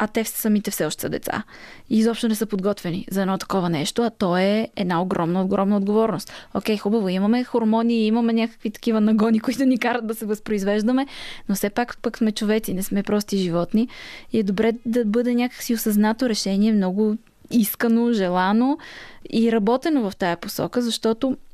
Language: Bulgarian